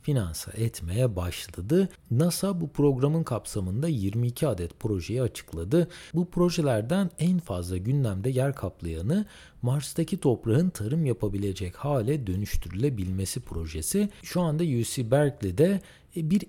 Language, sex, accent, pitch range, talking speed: Turkish, male, native, 100-165 Hz, 110 wpm